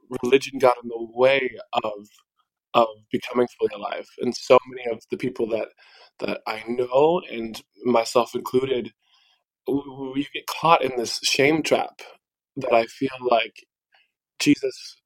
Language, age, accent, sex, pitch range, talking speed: English, 20-39, American, male, 115-135 Hz, 140 wpm